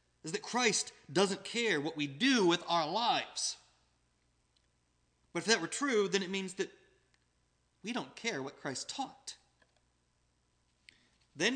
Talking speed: 140 wpm